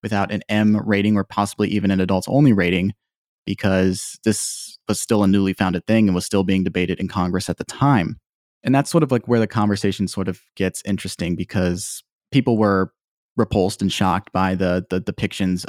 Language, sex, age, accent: English, male, 20-39, American